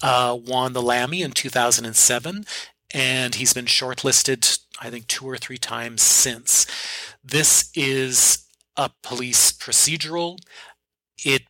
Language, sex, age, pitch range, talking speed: English, male, 30-49, 115-135 Hz, 120 wpm